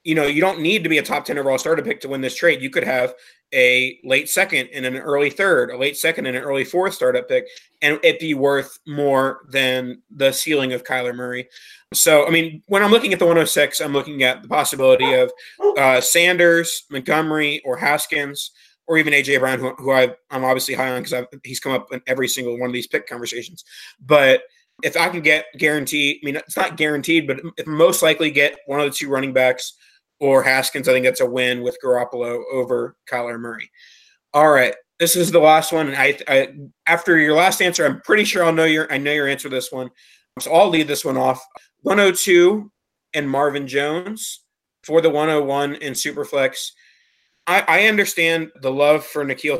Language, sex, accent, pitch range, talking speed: English, male, American, 130-165 Hz, 210 wpm